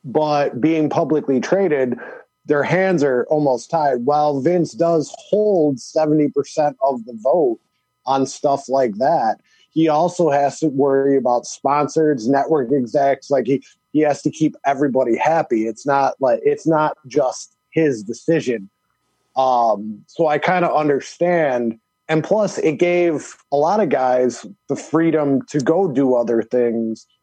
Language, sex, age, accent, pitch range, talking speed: English, male, 30-49, American, 125-155 Hz, 150 wpm